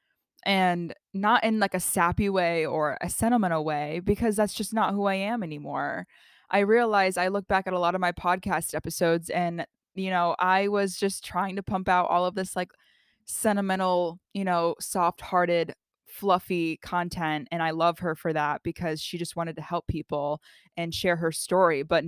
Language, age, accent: English, 20-39, American